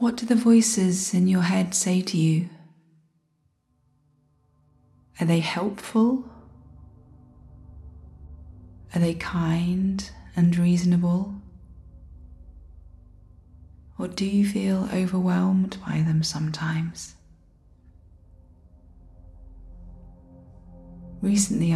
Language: English